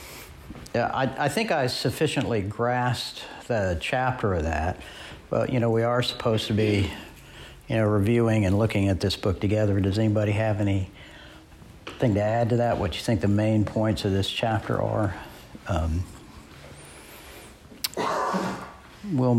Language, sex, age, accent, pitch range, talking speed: English, male, 60-79, American, 100-125 Hz, 150 wpm